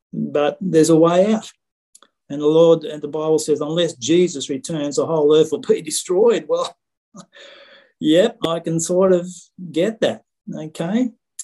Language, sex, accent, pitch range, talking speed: English, male, Australian, 125-155 Hz, 155 wpm